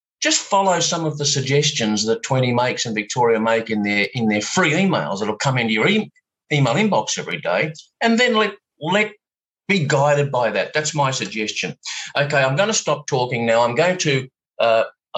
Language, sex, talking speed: English, male, 190 wpm